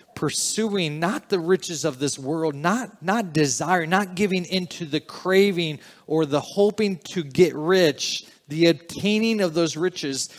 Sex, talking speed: male, 150 wpm